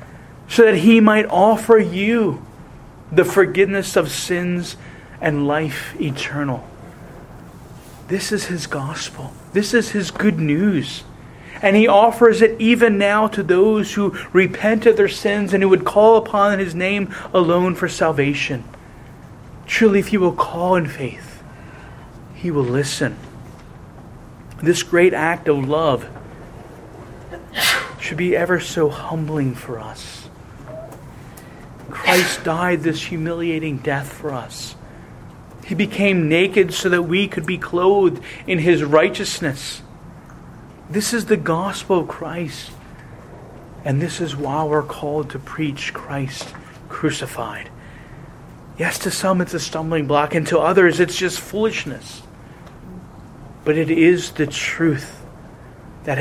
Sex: male